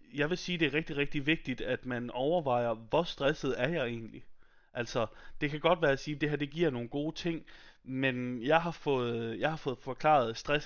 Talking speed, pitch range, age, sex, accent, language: 210 wpm, 120-150 Hz, 30-49, male, native, Danish